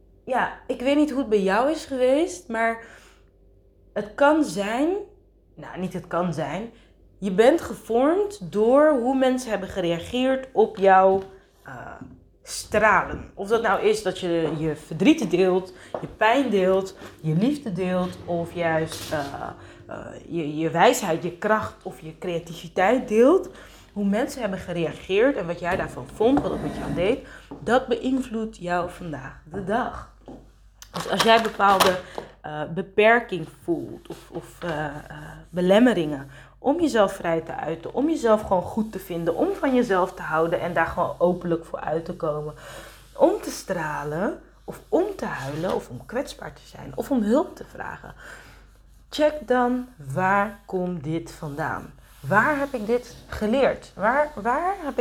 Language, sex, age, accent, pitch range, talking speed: Dutch, female, 20-39, Dutch, 170-250 Hz, 160 wpm